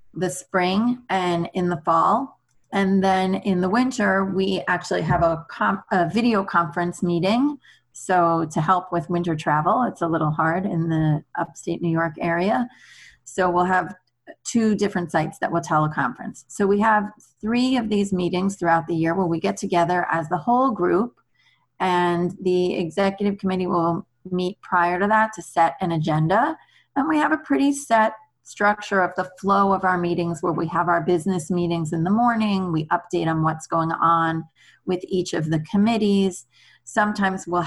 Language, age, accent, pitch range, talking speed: English, 30-49, American, 170-195 Hz, 175 wpm